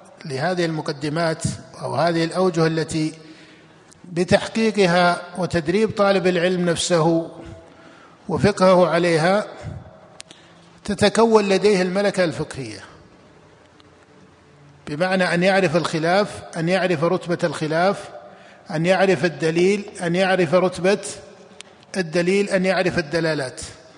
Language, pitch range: Arabic, 165-195 Hz